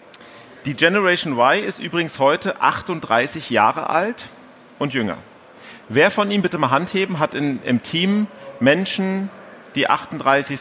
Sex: male